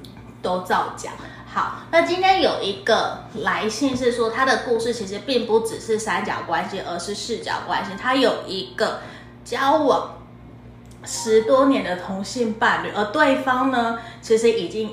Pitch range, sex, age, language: 185-255 Hz, female, 20-39, Chinese